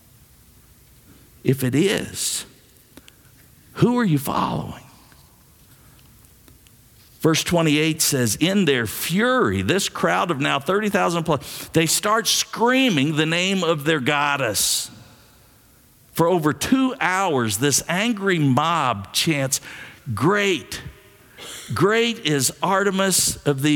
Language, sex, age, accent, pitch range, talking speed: English, male, 50-69, American, 115-170 Hz, 105 wpm